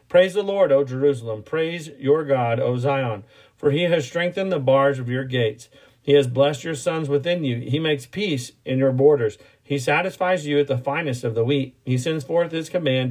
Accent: American